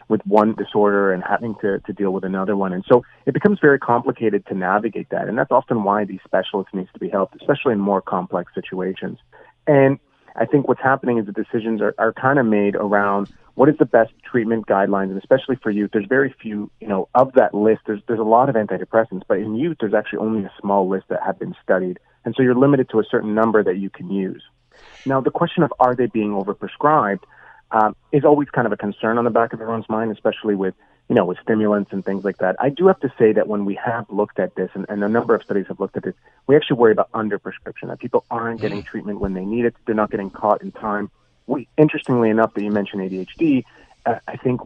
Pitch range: 100-120 Hz